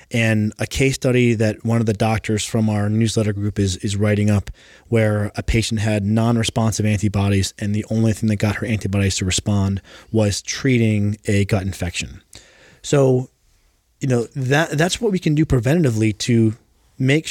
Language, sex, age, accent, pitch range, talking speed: English, male, 30-49, American, 105-135 Hz, 175 wpm